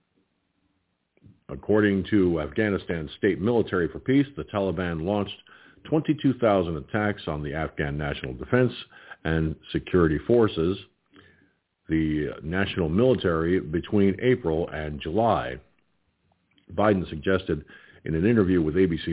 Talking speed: 105 wpm